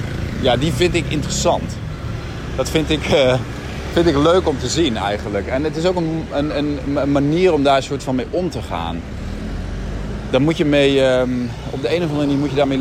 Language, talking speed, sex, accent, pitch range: Dutch, 220 wpm, male, Dutch, 100-145 Hz